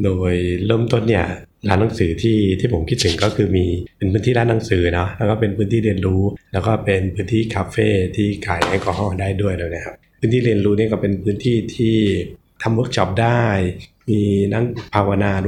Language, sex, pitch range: Thai, male, 95-110 Hz